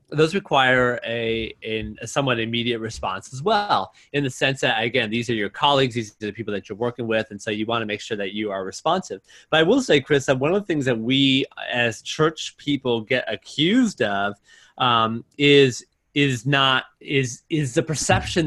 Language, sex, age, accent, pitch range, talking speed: English, male, 30-49, American, 115-145 Hz, 205 wpm